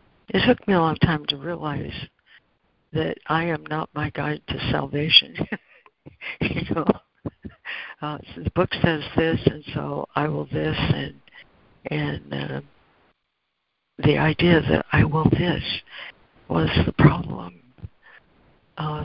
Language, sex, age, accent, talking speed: English, female, 60-79, American, 130 wpm